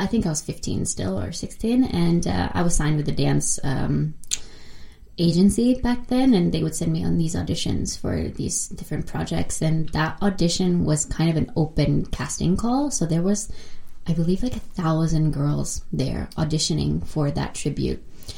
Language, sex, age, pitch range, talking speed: Finnish, female, 20-39, 155-200 Hz, 185 wpm